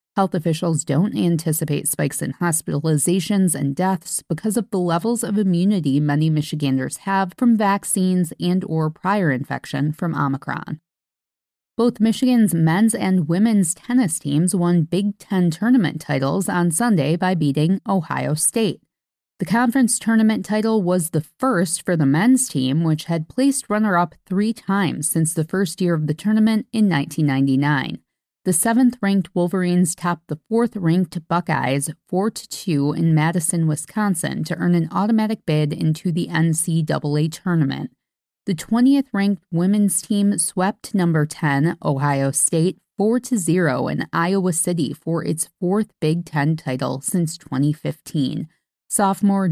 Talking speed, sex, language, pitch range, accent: 135 wpm, female, English, 155-200 Hz, American